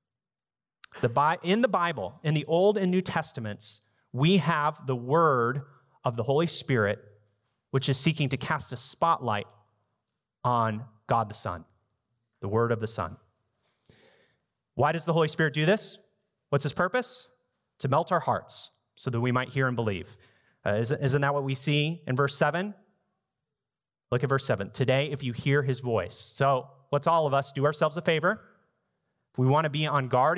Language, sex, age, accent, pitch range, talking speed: English, male, 30-49, American, 115-165 Hz, 180 wpm